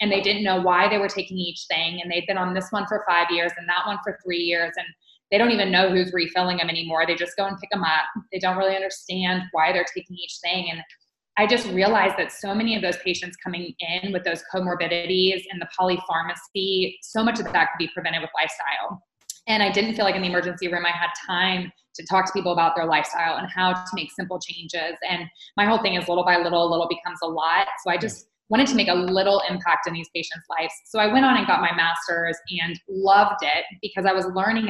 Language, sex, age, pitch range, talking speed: English, female, 20-39, 170-190 Hz, 245 wpm